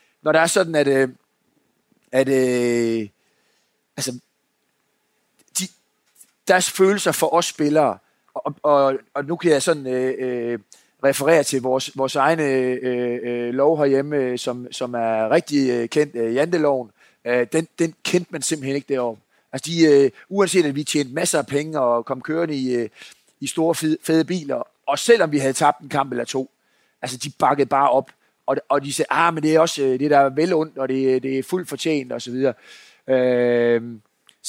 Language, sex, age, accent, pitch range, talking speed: Danish, male, 30-49, native, 125-155 Hz, 185 wpm